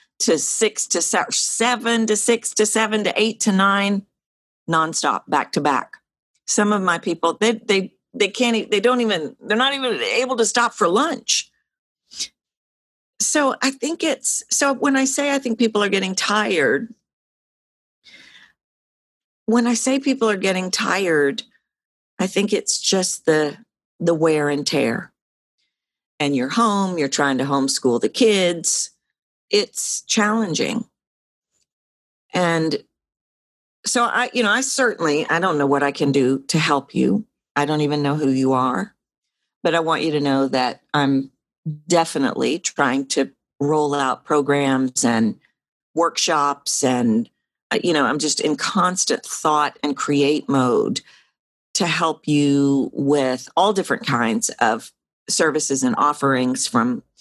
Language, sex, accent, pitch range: English, female, American, 140-230 Hz